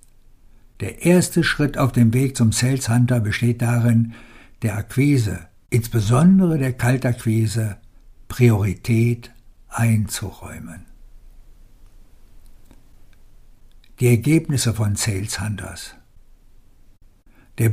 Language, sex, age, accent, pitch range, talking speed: German, male, 60-79, German, 105-125 Hz, 80 wpm